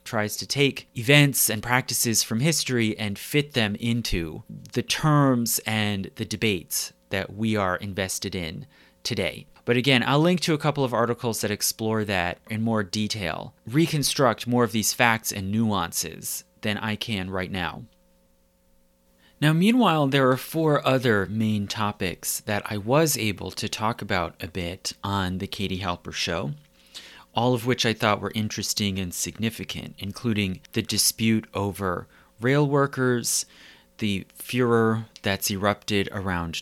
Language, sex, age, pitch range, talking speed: English, male, 30-49, 95-120 Hz, 150 wpm